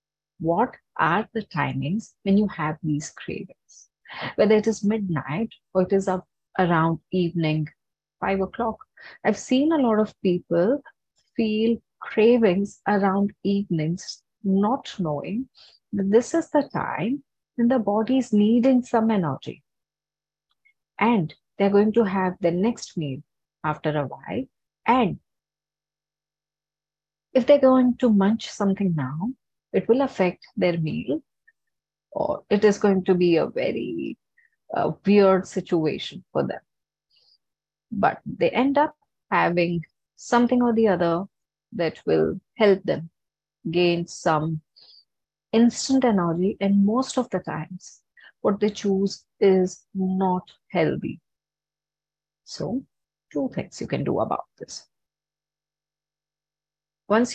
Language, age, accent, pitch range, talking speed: English, 30-49, Indian, 160-230 Hz, 125 wpm